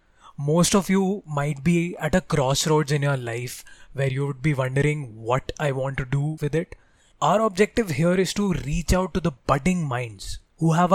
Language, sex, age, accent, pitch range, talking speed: English, male, 20-39, Indian, 140-195 Hz, 195 wpm